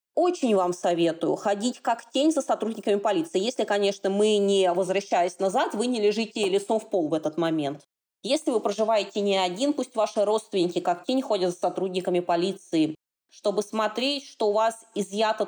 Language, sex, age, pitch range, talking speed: Russian, female, 20-39, 185-235 Hz, 170 wpm